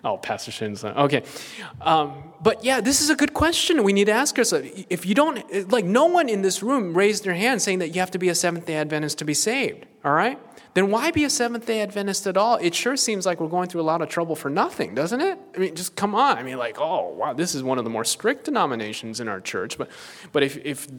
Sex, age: male, 30-49